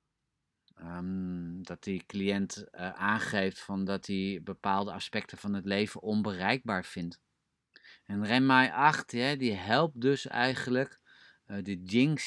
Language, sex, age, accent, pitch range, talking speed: Dutch, male, 30-49, Dutch, 100-120 Hz, 135 wpm